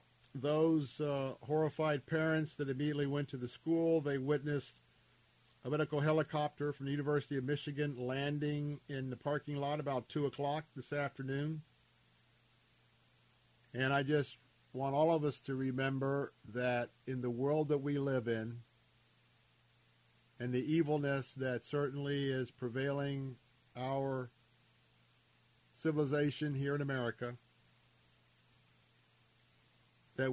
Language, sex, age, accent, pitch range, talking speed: English, male, 50-69, American, 125-145 Hz, 120 wpm